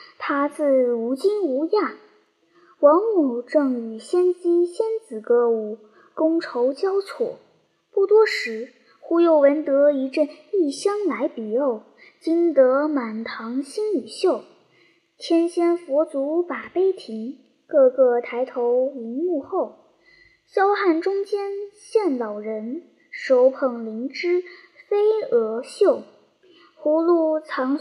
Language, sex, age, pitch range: Chinese, male, 10-29, 265-390 Hz